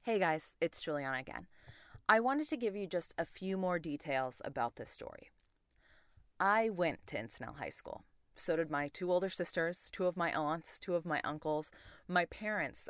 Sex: female